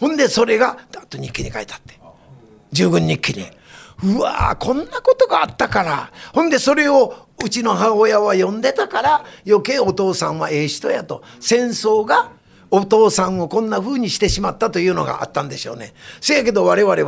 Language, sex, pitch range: Japanese, male, 195-280 Hz